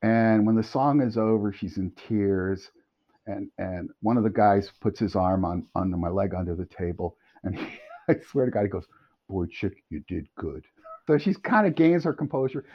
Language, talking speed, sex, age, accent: English, 210 wpm, male, 50-69, American